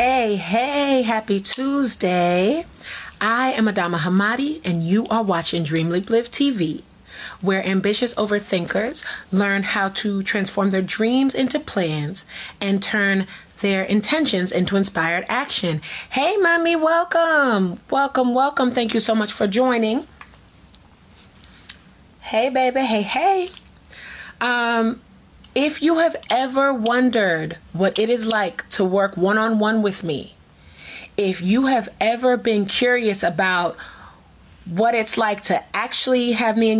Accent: American